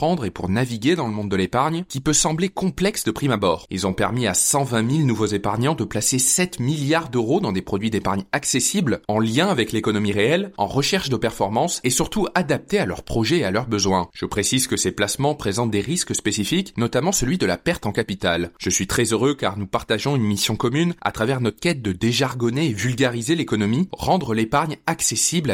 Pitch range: 105-145 Hz